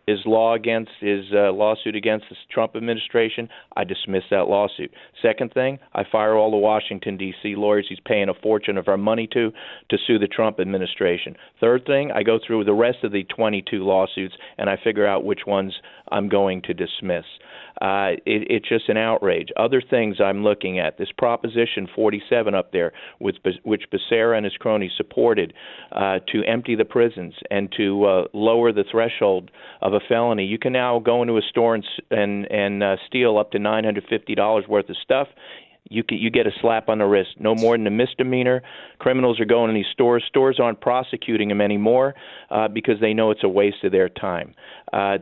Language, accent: English, American